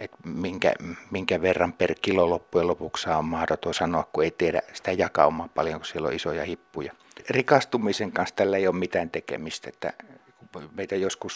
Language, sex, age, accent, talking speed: Finnish, male, 60-79, native, 175 wpm